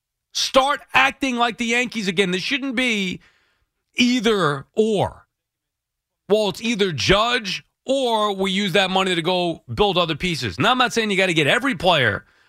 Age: 40-59